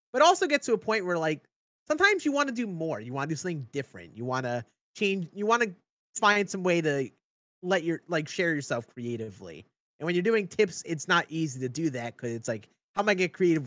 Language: English